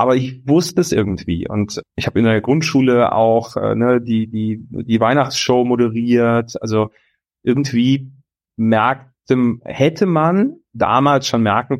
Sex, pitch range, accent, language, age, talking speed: male, 105-130 Hz, German, German, 30-49, 135 wpm